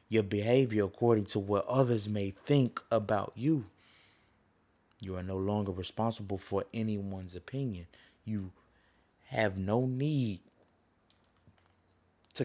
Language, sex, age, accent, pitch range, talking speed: English, male, 20-39, American, 100-120 Hz, 110 wpm